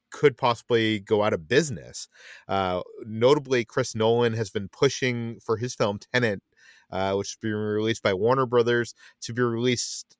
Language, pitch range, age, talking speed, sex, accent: English, 105-130 Hz, 30-49, 160 wpm, male, American